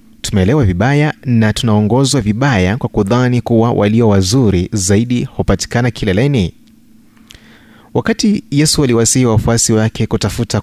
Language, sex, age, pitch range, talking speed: Swahili, male, 30-49, 105-135 Hz, 105 wpm